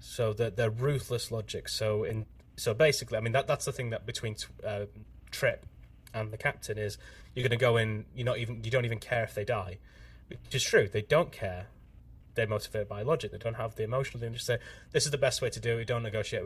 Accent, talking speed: British, 240 wpm